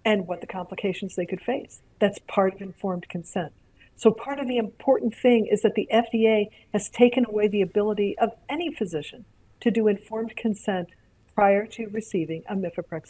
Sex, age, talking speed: female, 60-79, 180 wpm